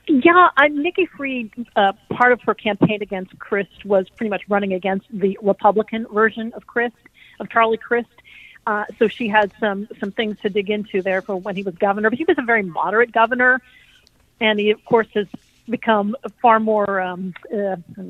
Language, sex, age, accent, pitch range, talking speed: English, female, 50-69, American, 195-225 Hz, 190 wpm